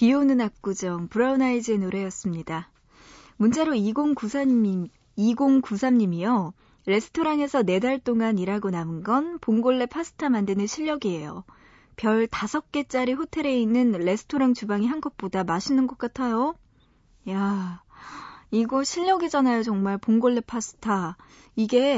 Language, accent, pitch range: Korean, native, 195-265 Hz